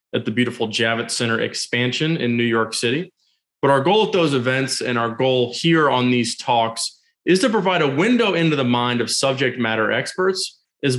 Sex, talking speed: male, 195 wpm